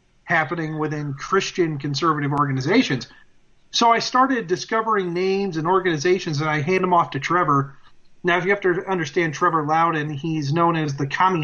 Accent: American